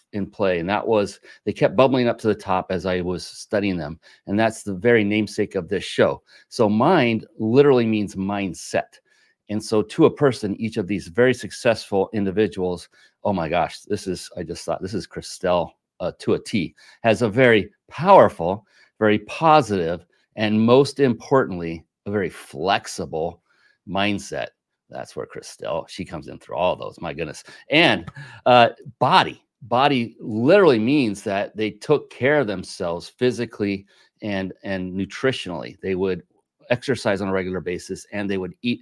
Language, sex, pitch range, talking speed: English, male, 95-115 Hz, 165 wpm